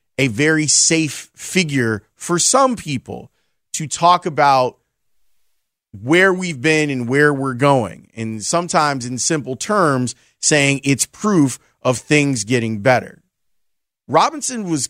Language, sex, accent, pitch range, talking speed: English, male, American, 125-170 Hz, 125 wpm